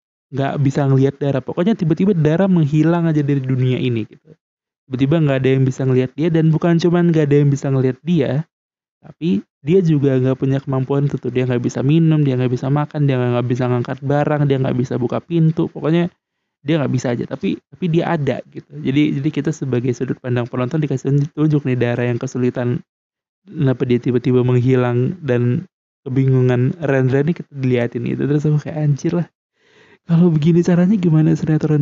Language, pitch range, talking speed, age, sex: Indonesian, 130-165 Hz, 185 wpm, 20-39, male